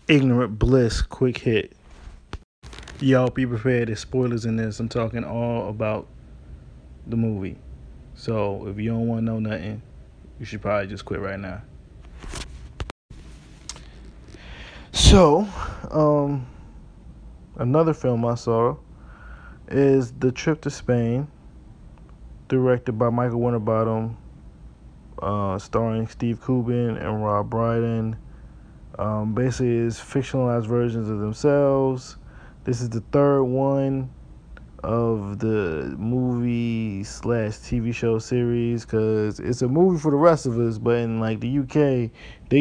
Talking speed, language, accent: 120 wpm, English, American